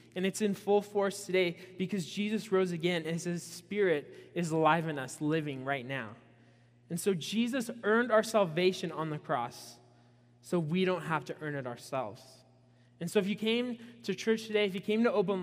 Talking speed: 195 wpm